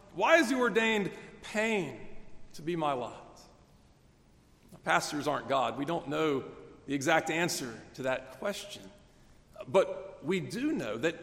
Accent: American